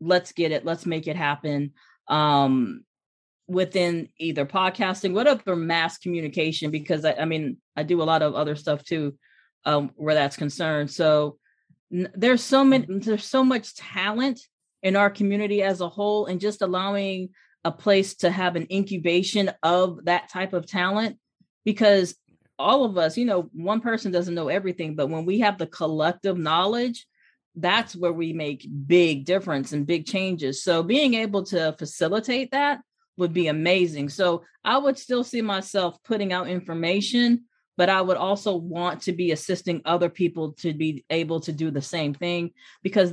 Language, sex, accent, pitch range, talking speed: English, female, American, 155-200 Hz, 170 wpm